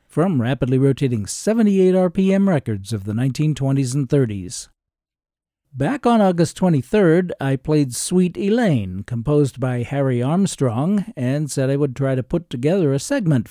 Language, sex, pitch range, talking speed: English, male, 125-165 Hz, 145 wpm